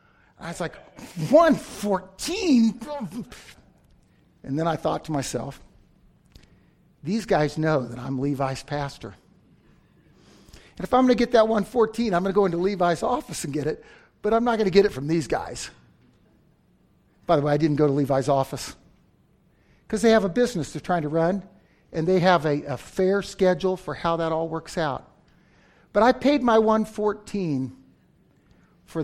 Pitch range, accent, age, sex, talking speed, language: 145-210 Hz, American, 50-69, male, 170 wpm, English